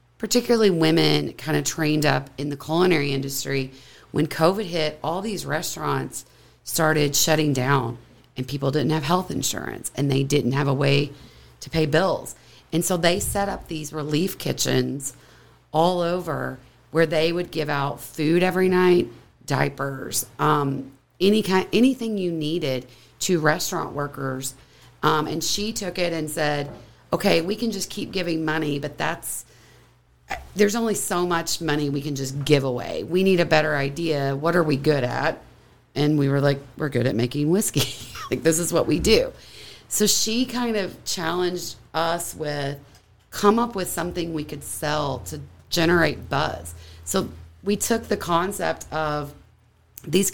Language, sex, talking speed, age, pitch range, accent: English, female, 165 wpm, 40-59, 135-175 Hz, American